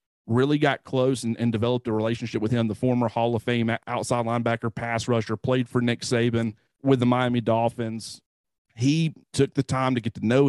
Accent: American